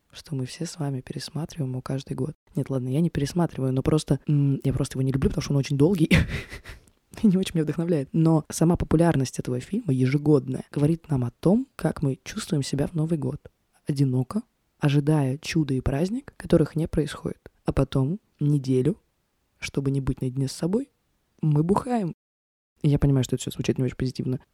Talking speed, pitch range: 190 wpm, 135-170 Hz